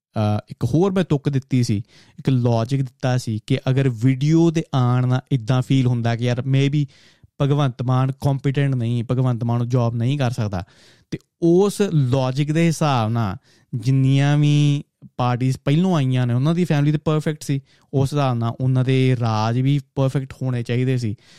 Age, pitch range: 20-39, 125-150 Hz